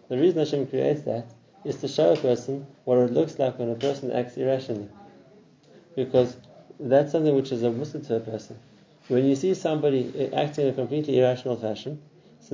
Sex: male